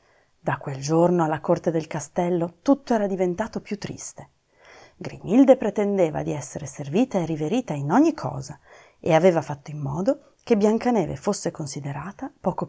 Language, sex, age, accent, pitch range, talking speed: Italian, female, 30-49, native, 145-195 Hz, 150 wpm